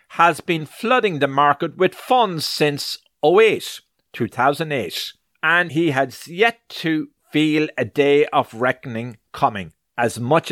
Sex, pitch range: male, 130-170 Hz